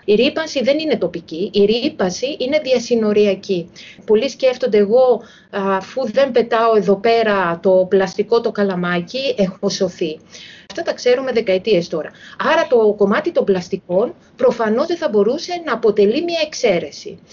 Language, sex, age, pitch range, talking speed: Greek, female, 30-49, 195-245 Hz, 140 wpm